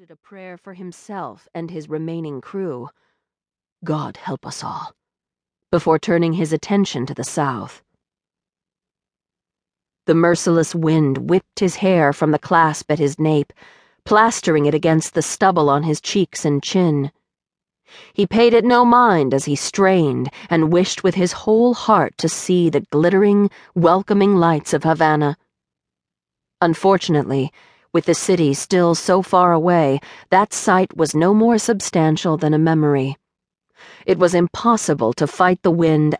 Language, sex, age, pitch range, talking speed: English, female, 40-59, 150-190 Hz, 145 wpm